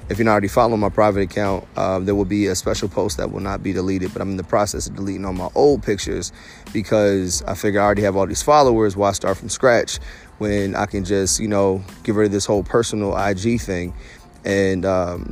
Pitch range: 95-110 Hz